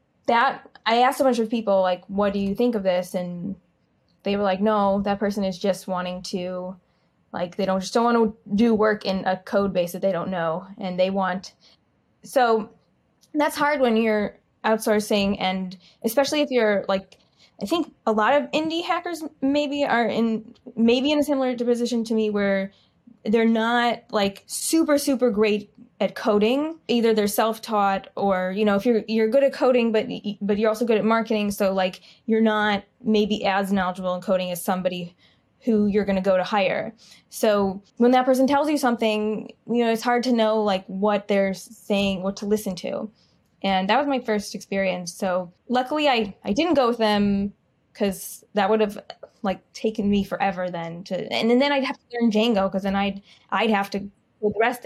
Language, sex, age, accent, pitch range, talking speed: English, female, 20-39, American, 195-235 Hz, 200 wpm